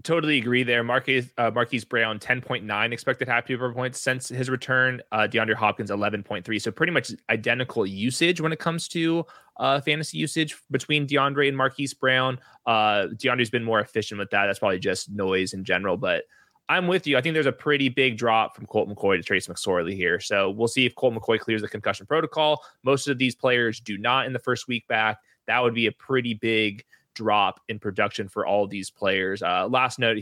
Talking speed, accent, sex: 205 wpm, American, male